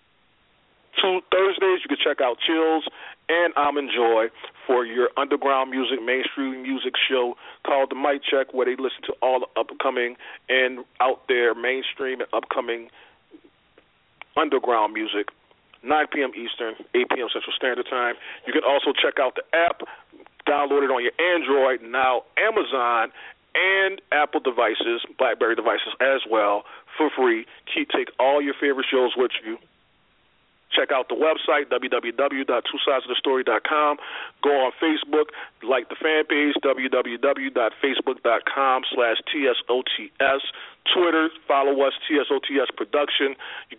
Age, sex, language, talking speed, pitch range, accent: 40-59, male, English, 130 wpm, 130-165 Hz, American